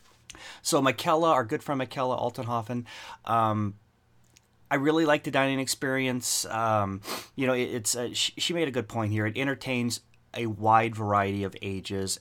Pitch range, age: 105-135 Hz, 30-49